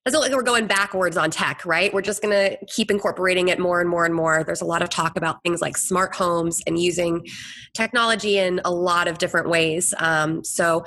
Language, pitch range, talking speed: English, 165-195 Hz, 225 wpm